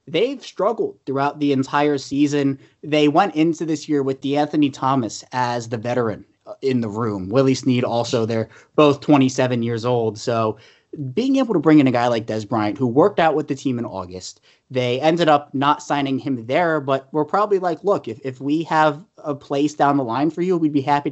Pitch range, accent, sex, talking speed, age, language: 125-150 Hz, American, male, 205 wpm, 30-49, English